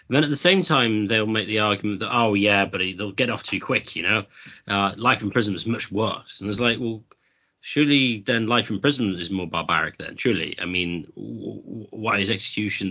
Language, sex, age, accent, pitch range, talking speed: English, male, 30-49, British, 100-140 Hz, 230 wpm